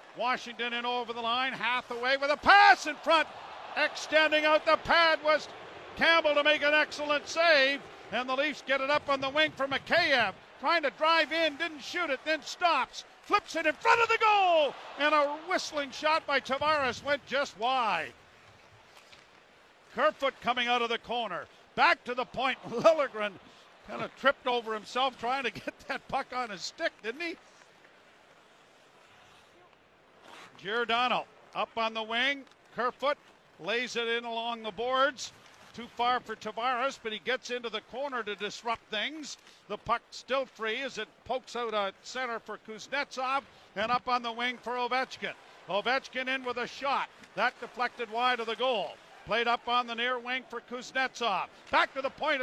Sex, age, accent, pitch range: male, 50-69, American, 235-295 Hz